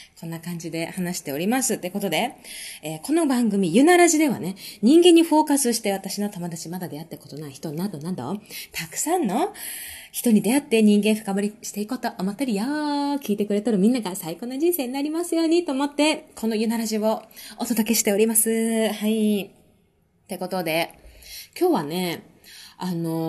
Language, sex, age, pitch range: Japanese, female, 20-39, 185-260 Hz